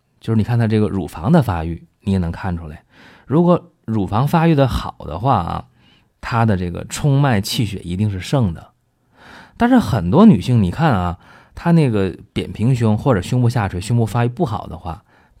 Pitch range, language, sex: 90-125 Hz, Chinese, male